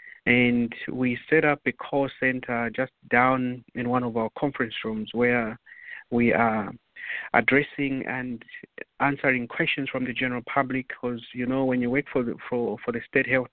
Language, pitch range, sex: English, 115-130 Hz, male